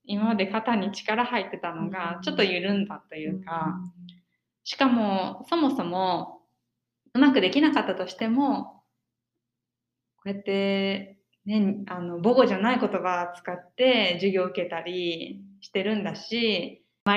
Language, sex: Japanese, female